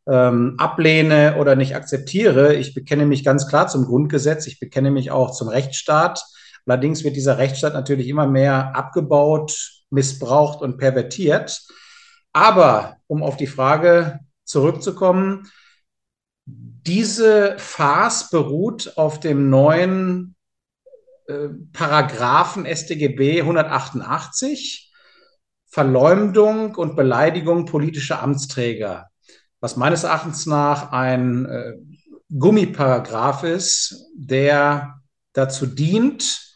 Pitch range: 135-185 Hz